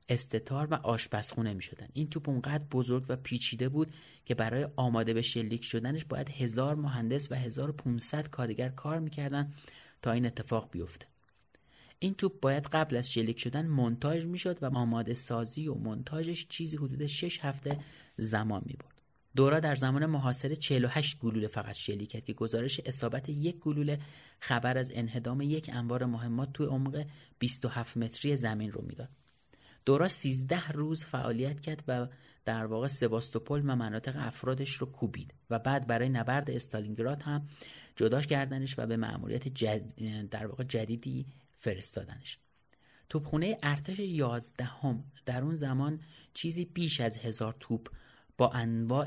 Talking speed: 145 wpm